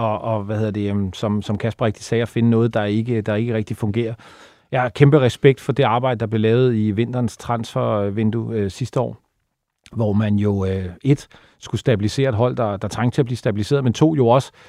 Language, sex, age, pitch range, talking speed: Danish, male, 40-59, 110-125 Hz, 230 wpm